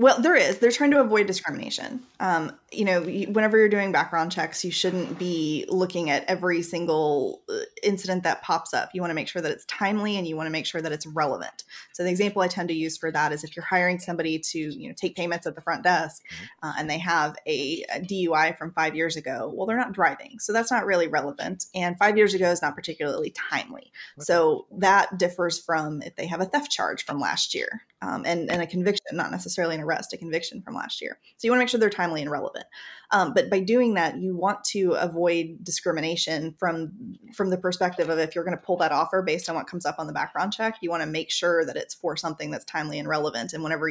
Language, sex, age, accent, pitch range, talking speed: English, female, 20-39, American, 160-200 Hz, 240 wpm